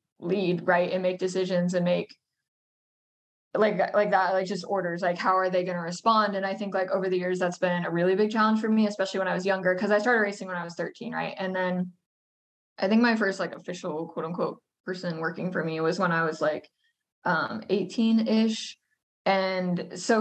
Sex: female